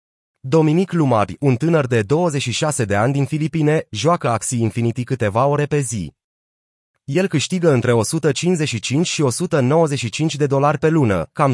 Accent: native